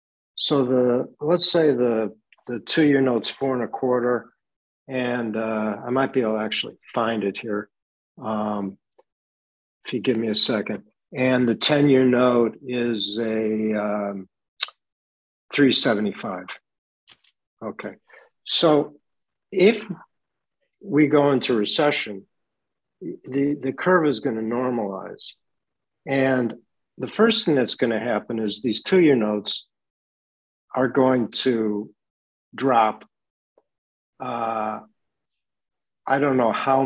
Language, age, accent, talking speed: English, 60-79, American, 120 wpm